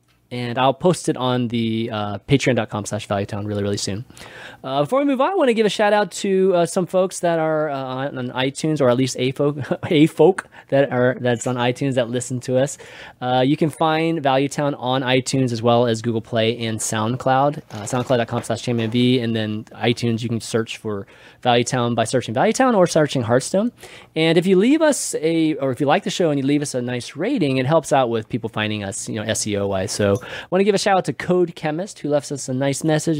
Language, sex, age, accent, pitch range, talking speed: English, male, 20-39, American, 120-155 Hz, 235 wpm